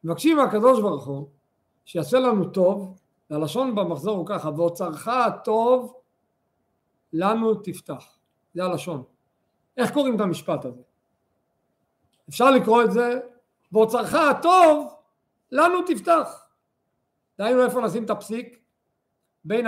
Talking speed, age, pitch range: 110 wpm, 50-69, 170-255 Hz